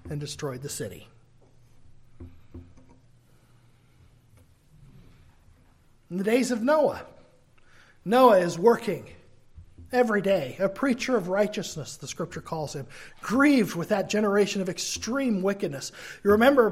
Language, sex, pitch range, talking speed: English, male, 135-195 Hz, 110 wpm